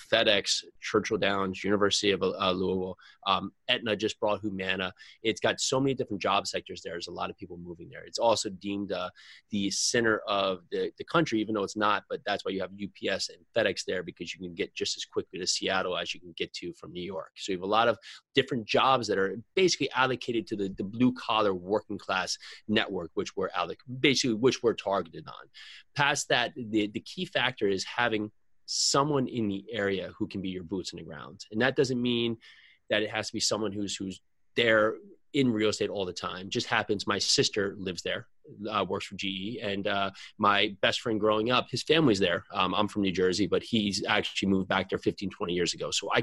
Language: English